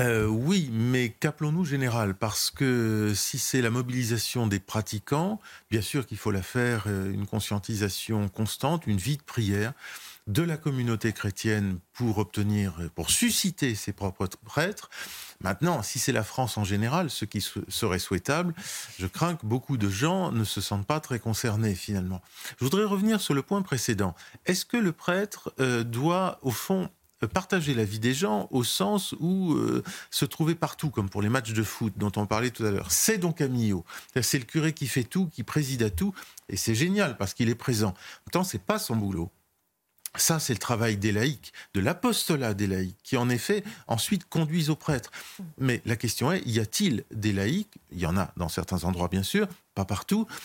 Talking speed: 190 wpm